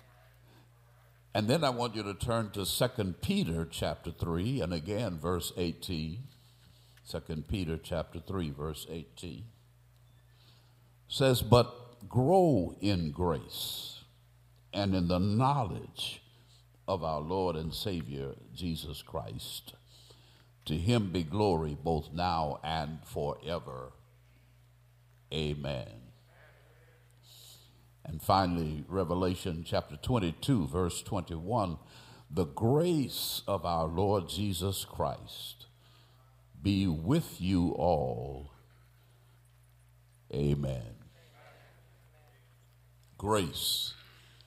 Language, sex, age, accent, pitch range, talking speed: English, male, 60-79, American, 85-120 Hz, 90 wpm